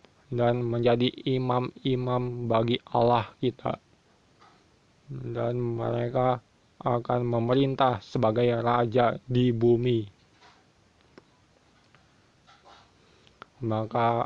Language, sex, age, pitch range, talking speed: Indonesian, male, 20-39, 115-125 Hz, 65 wpm